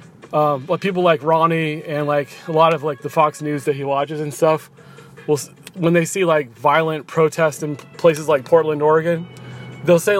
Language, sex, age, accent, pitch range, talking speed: English, male, 20-39, American, 150-175 Hz, 190 wpm